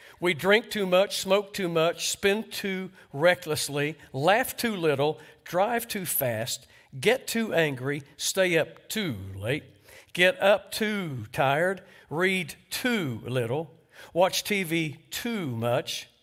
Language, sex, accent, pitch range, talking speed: English, male, American, 125-190 Hz, 125 wpm